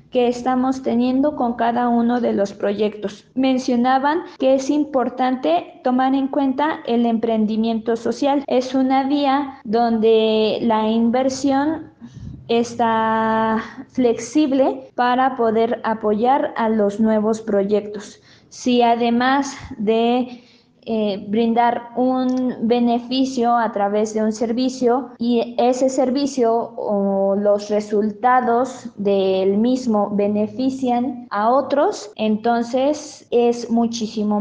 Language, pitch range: Spanish, 220-260 Hz